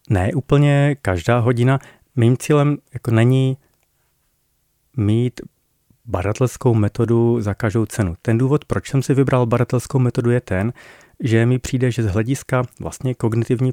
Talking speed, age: 140 wpm, 40-59